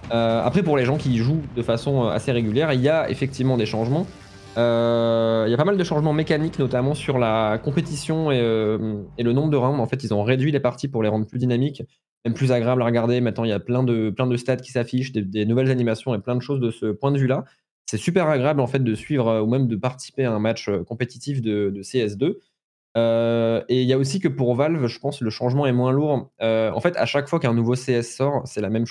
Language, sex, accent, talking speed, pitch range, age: French, male, French, 265 wpm, 115-140 Hz, 20-39